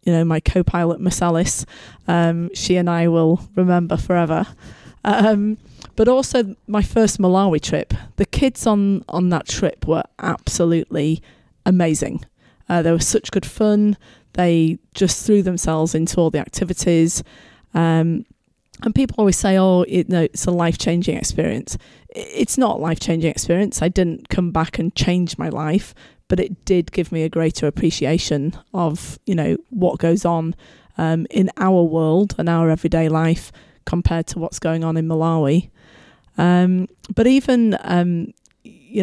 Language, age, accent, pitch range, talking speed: English, 30-49, British, 165-195 Hz, 160 wpm